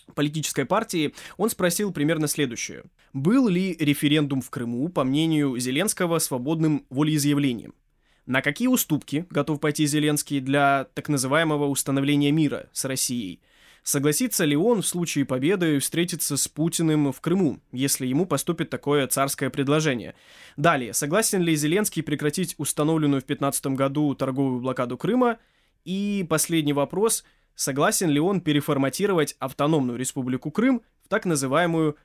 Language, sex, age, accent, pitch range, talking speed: Russian, male, 20-39, native, 140-165 Hz, 135 wpm